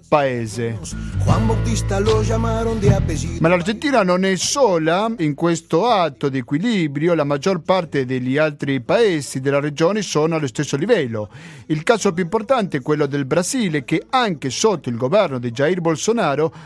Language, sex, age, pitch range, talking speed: Italian, male, 50-69, 150-200 Hz, 140 wpm